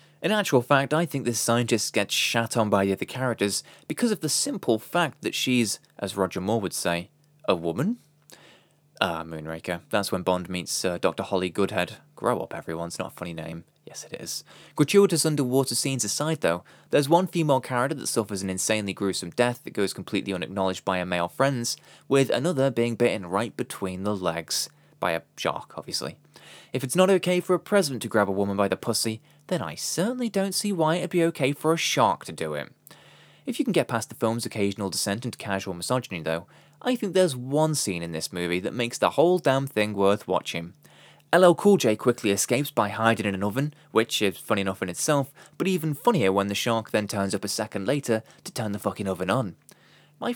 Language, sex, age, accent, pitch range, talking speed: English, male, 20-39, British, 100-150 Hz, 210 wpm